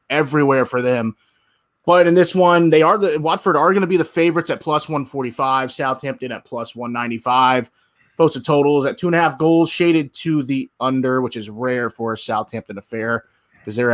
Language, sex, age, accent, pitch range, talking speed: English, male, 20-39, American, 120-150 Hz, 215 wpm